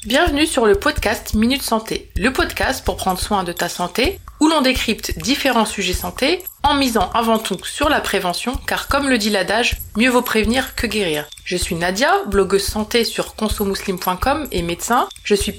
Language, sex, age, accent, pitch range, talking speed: French, female, 30-49, French, 200-275 Hz, 185 wpm